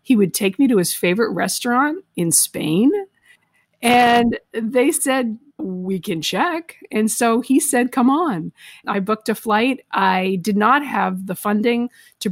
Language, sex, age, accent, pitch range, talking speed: English, female, 50-69, American, 190-235 Hz, 160 wpm